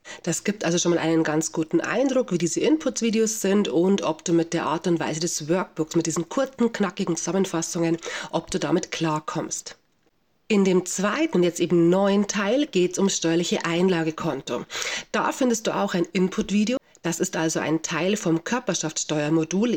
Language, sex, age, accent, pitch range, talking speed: German, female, 30-49, German, 165-205 Hz, 175 wpm